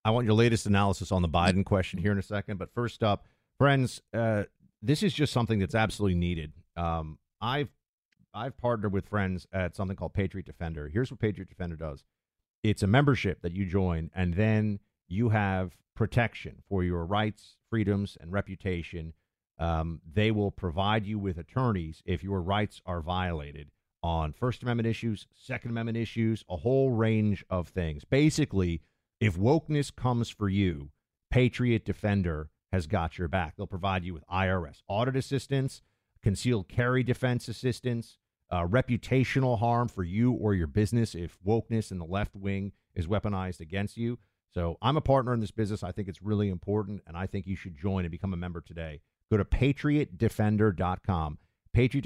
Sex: male